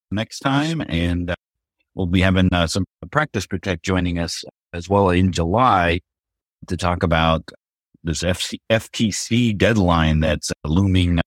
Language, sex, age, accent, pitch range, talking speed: English, male, 50-69, American, 85-115 Hz, 140 wpm